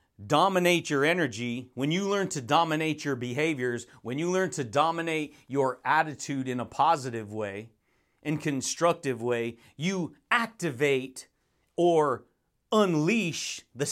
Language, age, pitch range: English, 40-59, 140-185 Hz